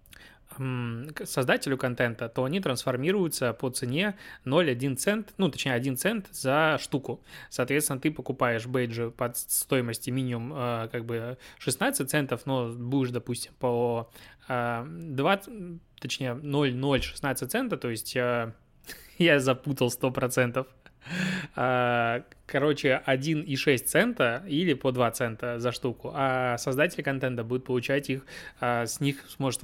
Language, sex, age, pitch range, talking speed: Russian, male, 20-39, 120-140 Hz, 130 wpm